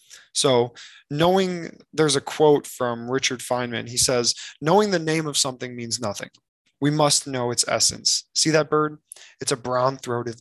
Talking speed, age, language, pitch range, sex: 160 wpm, 20-39, English, 120-145 Hz, male